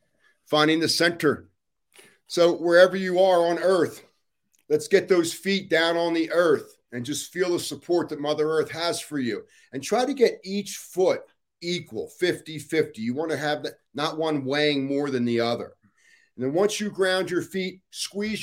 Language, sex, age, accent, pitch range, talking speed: English, male, 40-59, American, 120-190 Hz, 175 wpm